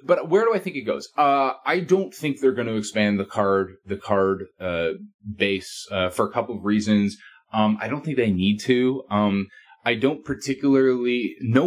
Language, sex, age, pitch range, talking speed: English, male, 20-39, 100-135 Hz, 195 wpm